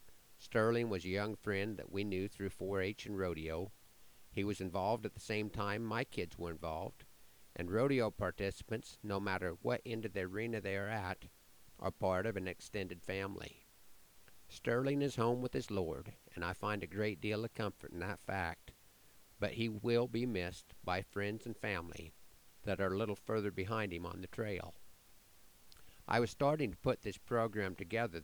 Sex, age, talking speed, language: male, 50-69, 185 wpm, English